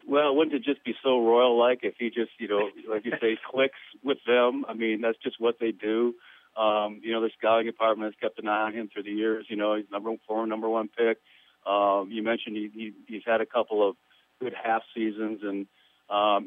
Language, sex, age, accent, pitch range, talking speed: English, male, 50-69, American, 105-120 Hz, 235 wpm